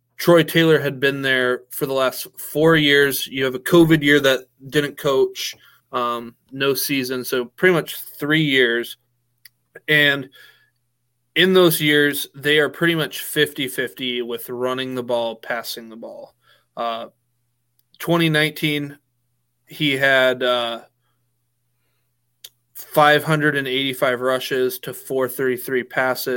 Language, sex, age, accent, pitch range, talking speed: English, male, 20-39, American, 125-145 Hz, 120 wpm